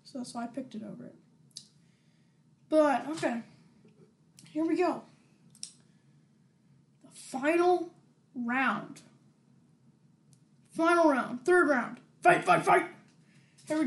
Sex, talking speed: female, 110 wpm